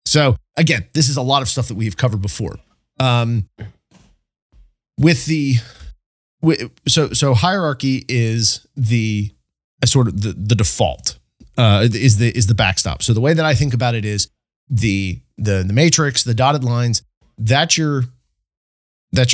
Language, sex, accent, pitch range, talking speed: English, male, American, 105-135 Hz, 160 wpm